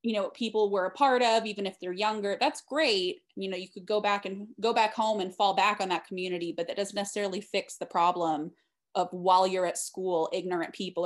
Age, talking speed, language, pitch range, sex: 20-39, 235 wpm, English, 180-220 Hz, female